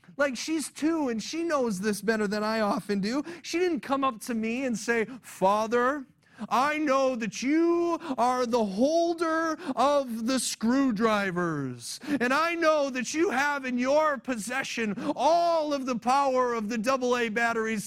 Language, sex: English, male